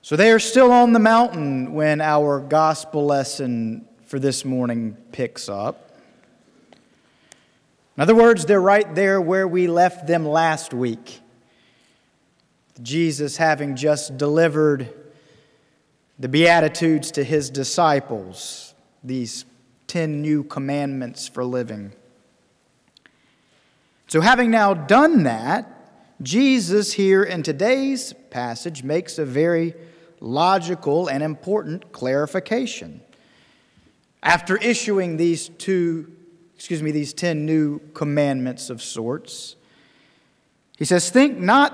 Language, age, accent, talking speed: English, 40-59, American, 110 wpm